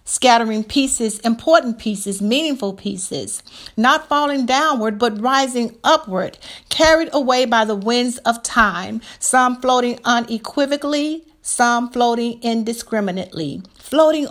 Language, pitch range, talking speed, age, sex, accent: English, 220-275 Hz, 110 wpm, 50-69, female, American